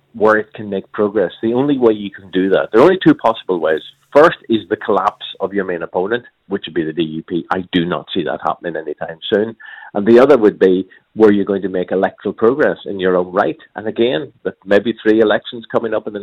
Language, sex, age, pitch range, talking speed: English, male, 40-59, 100-140 Hz, 240 wpm